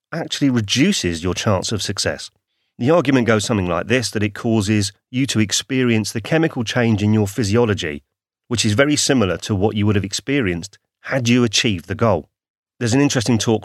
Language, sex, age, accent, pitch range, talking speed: English, male, 30-49, British, 95-125 Hz, 190 wpm